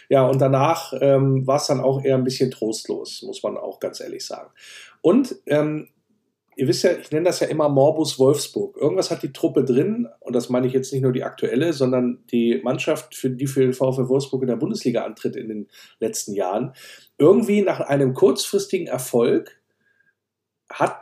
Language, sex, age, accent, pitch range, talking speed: German, male, 50-69, German, 130-165 Hz, 190 wpm